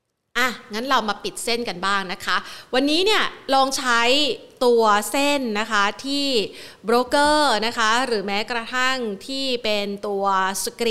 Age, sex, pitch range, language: 30-49, female, 200-255 Hz, Thai